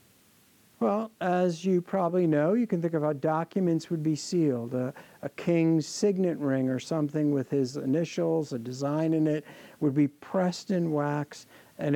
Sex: male